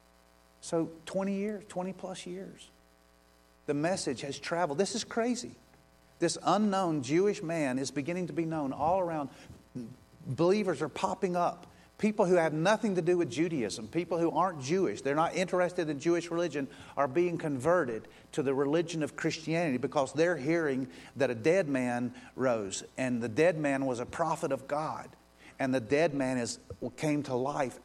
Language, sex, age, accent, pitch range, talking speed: English, male, 50-69, American, 130-170 Hz, 170 wpm